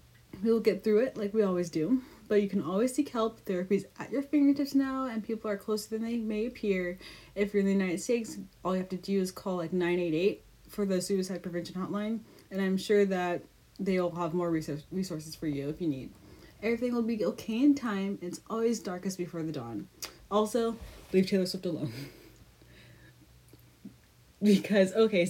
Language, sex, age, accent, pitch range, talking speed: English, female, 30-49, American, 175-215 Hz, 190 wpm